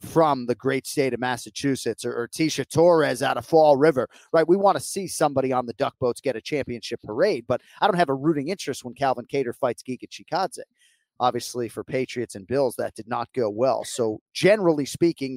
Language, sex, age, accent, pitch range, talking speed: English, male, 30-49, American, 125-160 Hz, 215 wpm